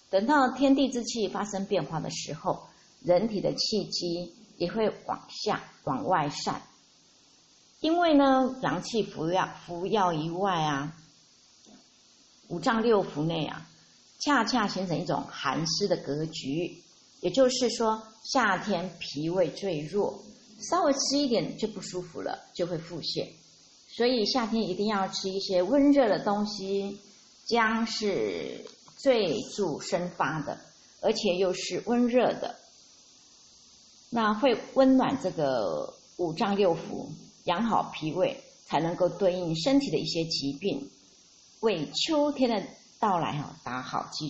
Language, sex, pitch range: Chinese, female, 175-250 Hz